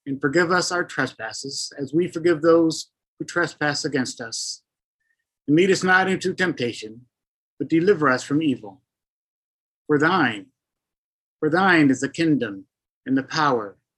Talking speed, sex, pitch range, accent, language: 145 wpm, male, 145-185 Hz, American, English